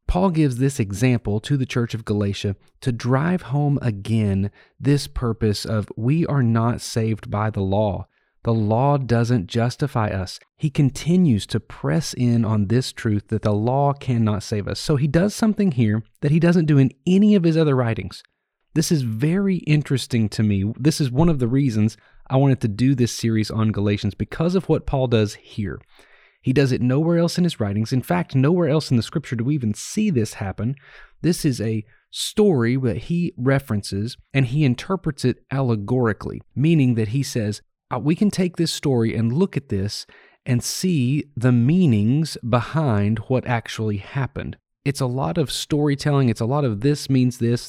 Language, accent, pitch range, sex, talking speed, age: English, American, 110-145 Hz, male, 185 wpm, 30-49